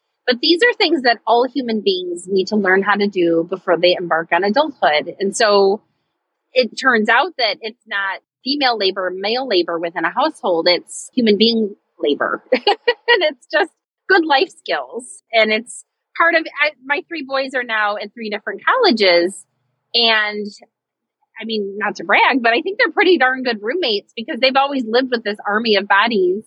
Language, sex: English, female